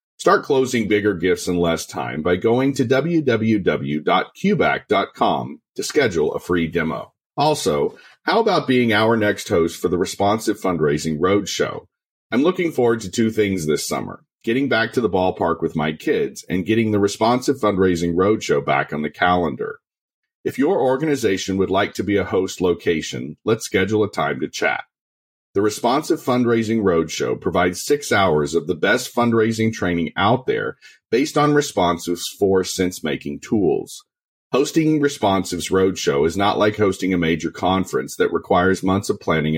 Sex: male